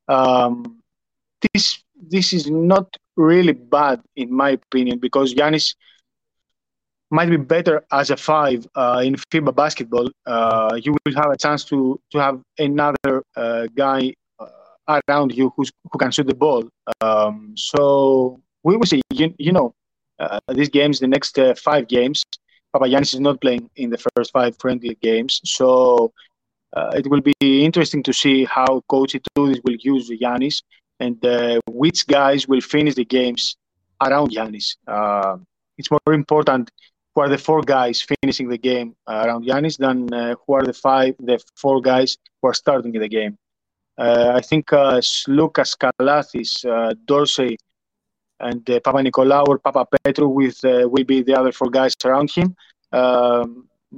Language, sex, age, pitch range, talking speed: English, male, 30-49, 125-150 Hz, 165 wpm